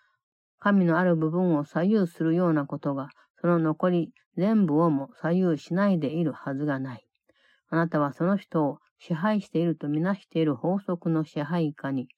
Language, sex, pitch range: Japanese, female, 150-185 Hz